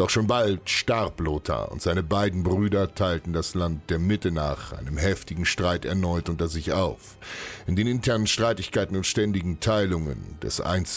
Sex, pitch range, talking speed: male, 80-100 Hz, 170 wpm